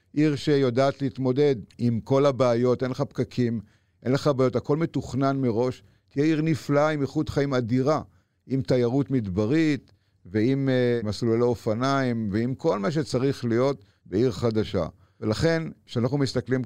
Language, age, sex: Hebrew, 50-69, male